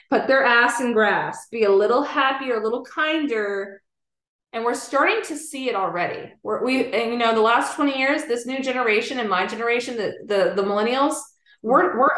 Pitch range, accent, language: 210-275 Hz, American, English